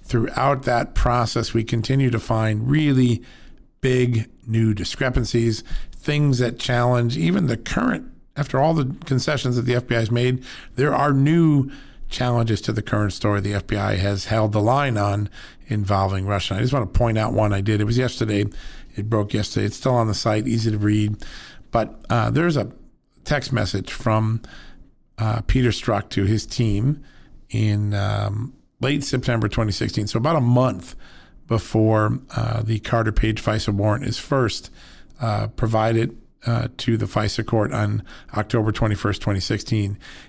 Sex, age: male, 40-59